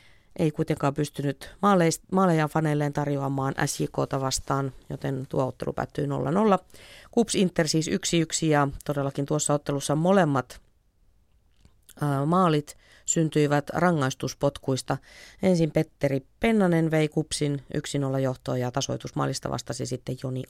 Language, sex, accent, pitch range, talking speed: Finnish, female, native, 135-165 Hz, 110 wpm